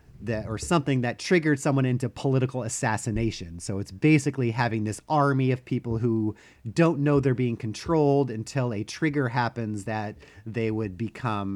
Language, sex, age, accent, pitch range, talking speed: English, male, 30-49, American, 110-145 Hz, 160 wpm